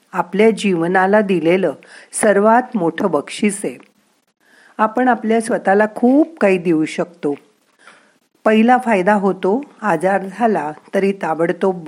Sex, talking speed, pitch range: female, 105 wpm, 170-225 Hz